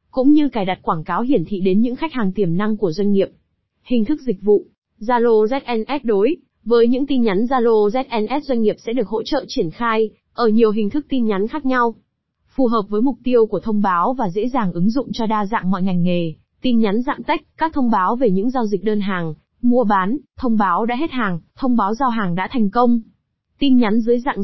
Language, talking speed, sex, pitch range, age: Vietnamese, 235 wpm, female, 205-255 Hz, 20-39